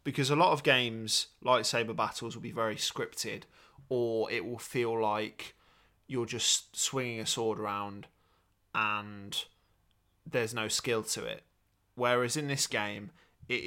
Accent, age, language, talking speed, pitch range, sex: British, 20-39, English, 145 wpm, 110-125 Hz, male